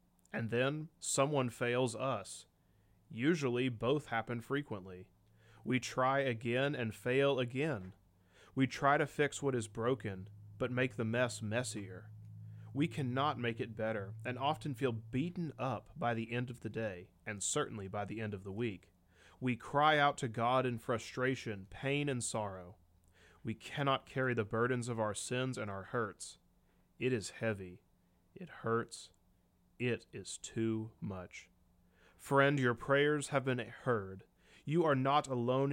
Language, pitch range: English, 105-140 Hz